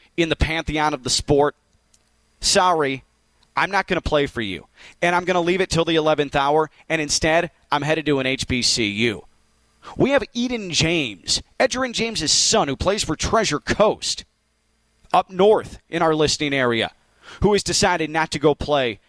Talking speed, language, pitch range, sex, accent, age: 175 wpm, English, 140-195 Hz, male, American, 30-49